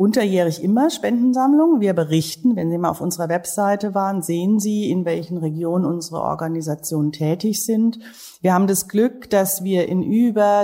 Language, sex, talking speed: German, female, 165 wpm